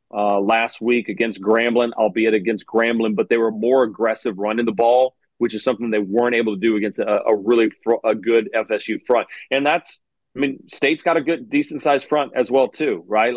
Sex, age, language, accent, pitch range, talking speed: male, 30-49, English, American, 110-130 Hz, 215 wpm